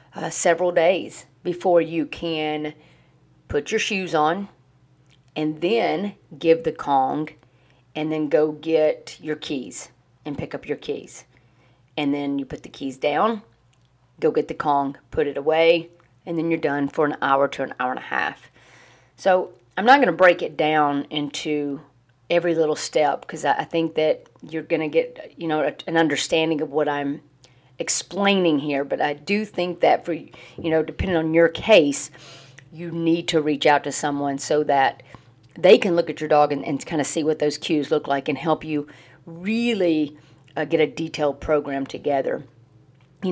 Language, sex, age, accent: English, female, 40-59, American